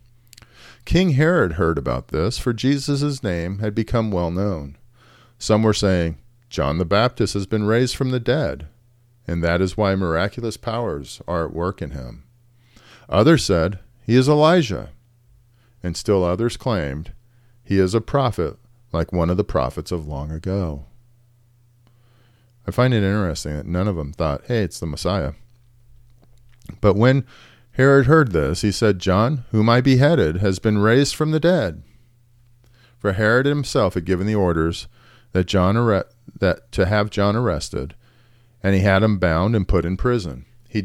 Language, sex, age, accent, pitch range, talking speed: English, male, 40-59, American, 90-120 Hz, 165 wpm